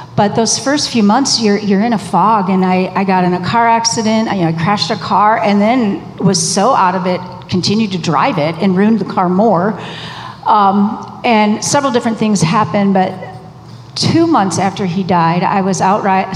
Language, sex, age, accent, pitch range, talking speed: English, female, 40-59, American, 180-205 Hz, 210 wpm